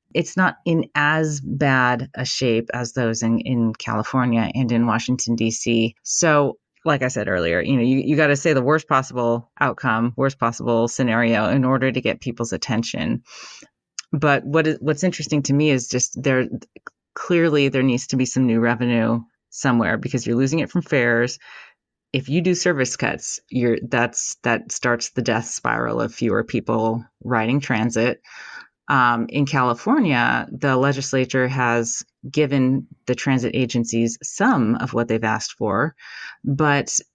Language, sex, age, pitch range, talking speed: English, female, 30-49, 120-160 Hz, 160 wpm